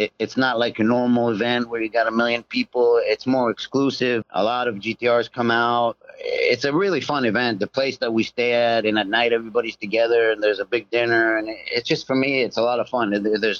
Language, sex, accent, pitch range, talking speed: English, male, American, 110-140 Hz, 235 wpm